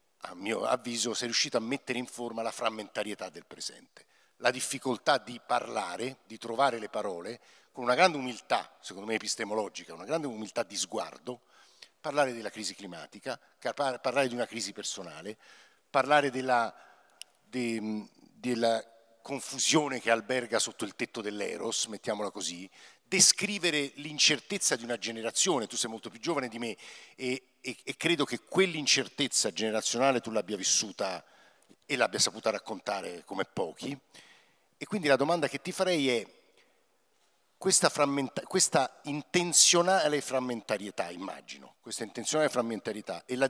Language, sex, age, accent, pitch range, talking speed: Italian, male, 50-69, native, 115-150 Hz, 140 wpm